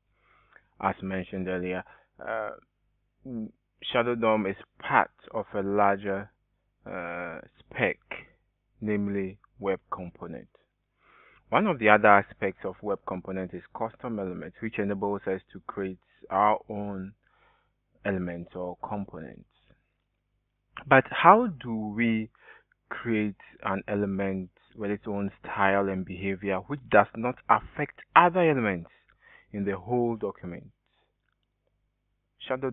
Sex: male